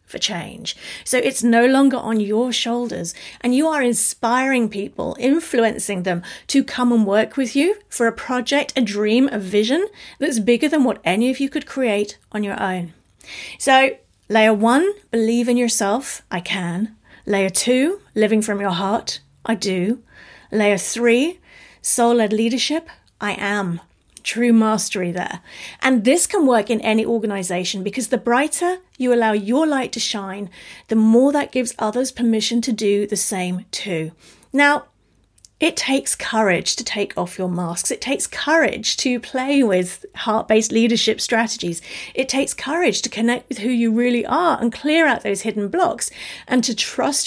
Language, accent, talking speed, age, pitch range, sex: English, British, 165 wpm, 40-59, 210-260 Hz, female